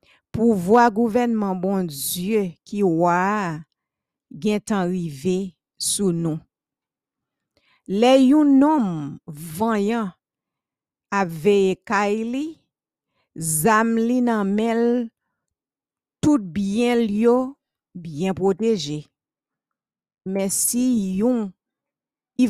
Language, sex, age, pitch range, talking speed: English, female, 50-69, 185-240 Hz, 75 wpm